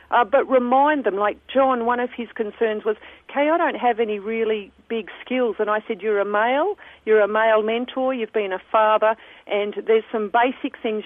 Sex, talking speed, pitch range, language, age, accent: female, 205 wpm, 210-250 Hz, English, 50-69, Australian